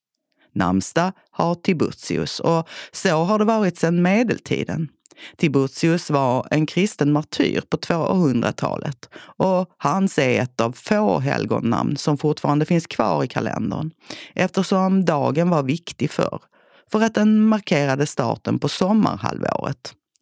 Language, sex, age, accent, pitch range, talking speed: Swedish, female, 40-59, native, 125-175 Hz, 125 wpm